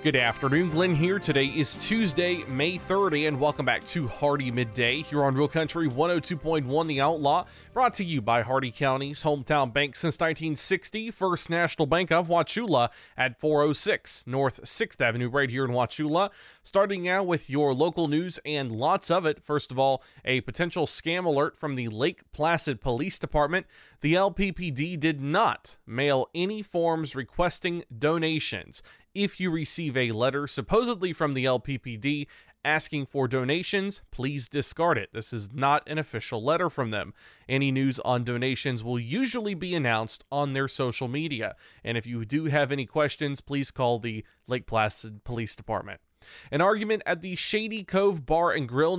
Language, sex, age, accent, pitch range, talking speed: English, male, 20-39, American, 130-170 Hz, 165 wpm